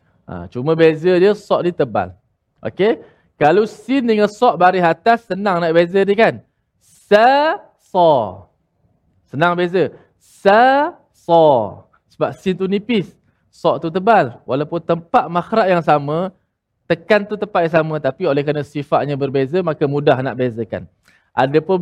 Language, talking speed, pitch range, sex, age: Malayalam, 145 wpm, 140-205 Hz, male, 20-39